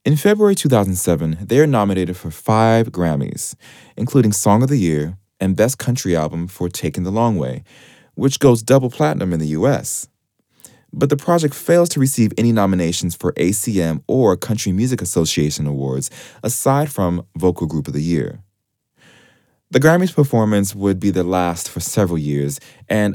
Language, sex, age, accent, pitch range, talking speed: English, male, 20-39, American, 85-125 Hz, 165 wpm